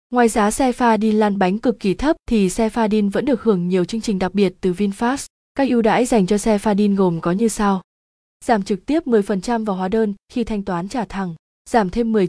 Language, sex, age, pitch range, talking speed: Vietnamese, female, 20-39, 195-235 Hz, 235 wpm